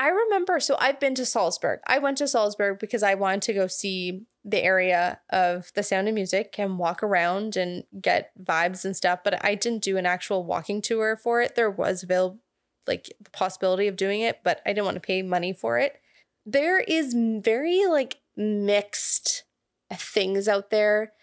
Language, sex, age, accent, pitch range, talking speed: English, female, 20-39, American, 185-235 Hz, 190 wpm